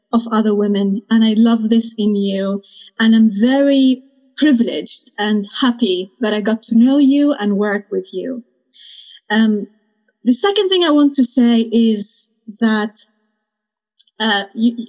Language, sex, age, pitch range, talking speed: English, female, 30-49, 210-250 Hz, 145 wpm